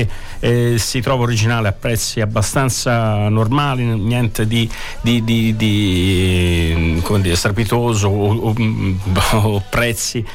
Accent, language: native, Italian